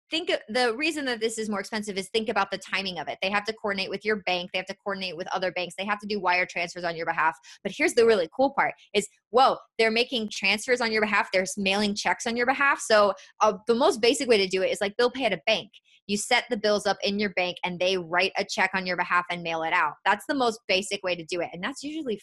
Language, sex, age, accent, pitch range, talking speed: English, female, 20-39, American, 185-225 Hz, 285 wpm